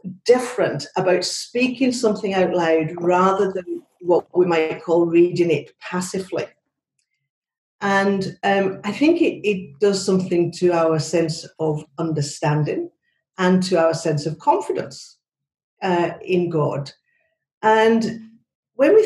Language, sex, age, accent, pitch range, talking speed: English, female, 50-69, British, 170-240 Hz, 125 wpm